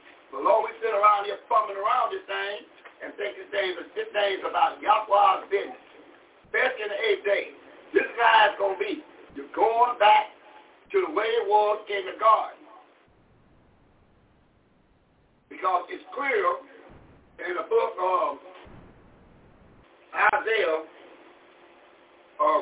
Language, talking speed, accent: English, 135 wpm, American